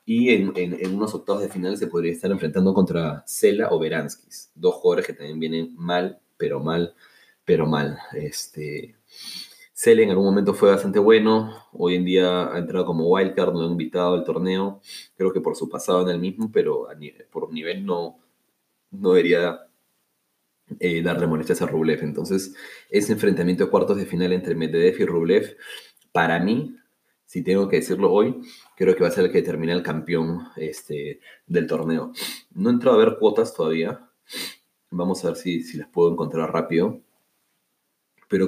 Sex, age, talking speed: male, 30-49, 175 wpm